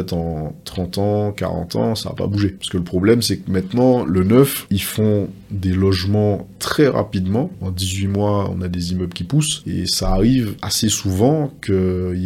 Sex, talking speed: male, 190 wpm